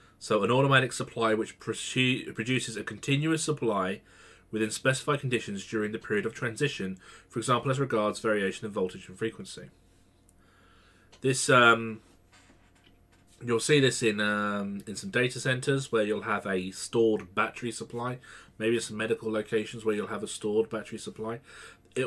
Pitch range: 95-120 Hz